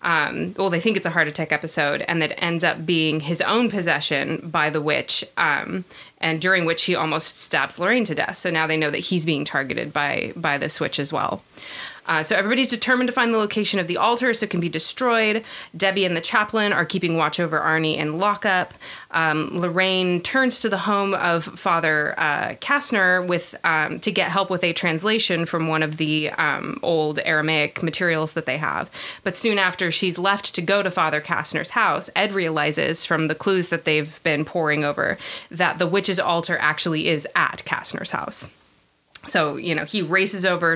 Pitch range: 155-190 Hz